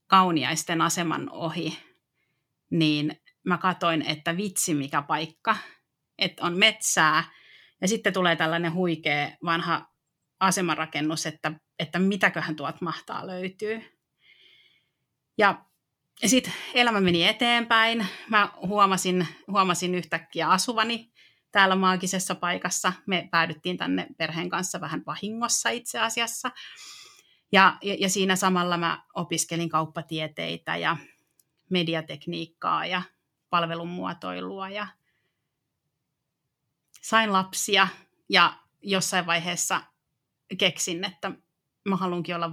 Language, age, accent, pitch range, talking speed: Finnish, 30-49, native, 160-200 Hz, 100 wpm